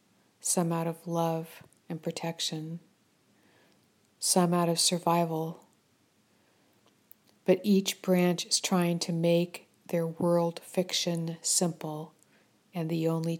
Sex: female